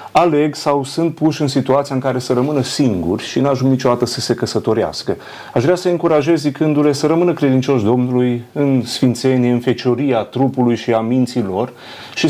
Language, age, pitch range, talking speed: Romanian, 30-49, 120-155 Hz, 180 wpm